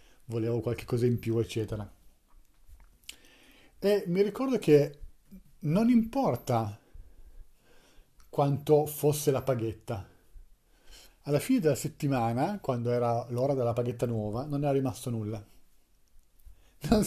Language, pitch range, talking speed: Italian, 120-155 Hz, 110 wpm